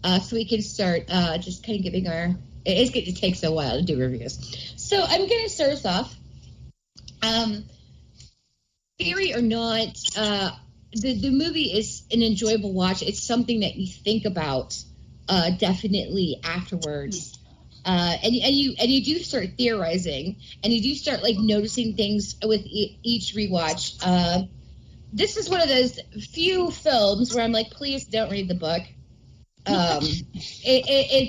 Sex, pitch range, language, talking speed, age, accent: female, 185-250 Hz, English, 165 wpm, 30-49, American